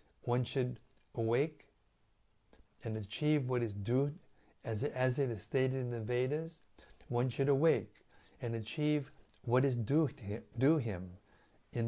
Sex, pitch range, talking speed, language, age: male, 105-130 Hz, 150 wpm, English, 60-79